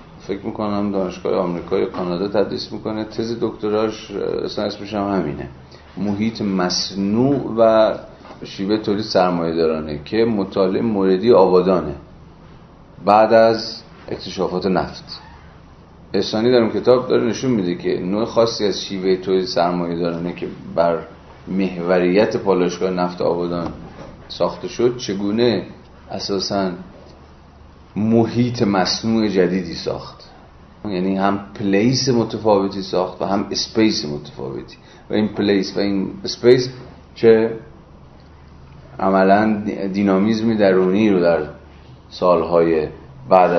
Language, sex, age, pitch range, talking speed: Persian, male, 40-59, 80-105 Hz, 110 wpm